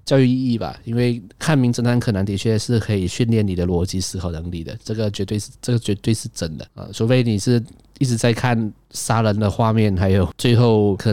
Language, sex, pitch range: Chinese, male, 95-120 Hz